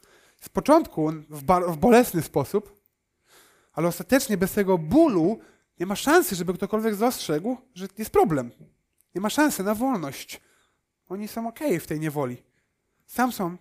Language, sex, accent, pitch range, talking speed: Polish, male, native, 155-225 Hz, 140 wpm